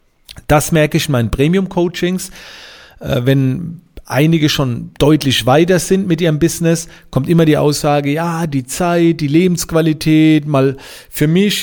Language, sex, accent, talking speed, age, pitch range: German, male, German, 140 wpm, 40-59, 125-175 Hz